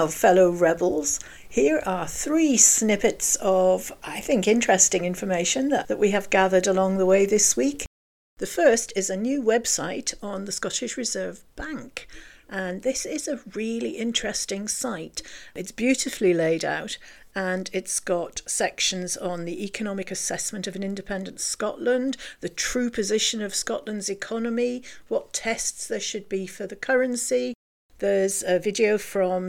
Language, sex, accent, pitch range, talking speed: English, female, British, 185-230 Hz, 150 wpm